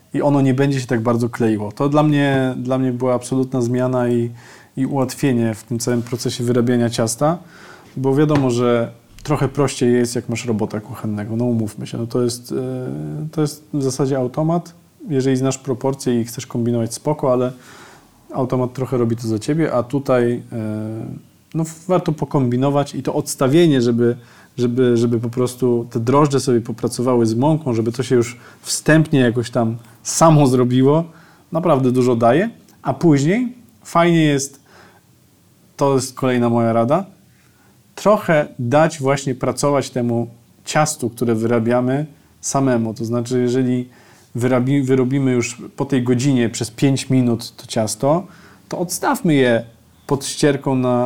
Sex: male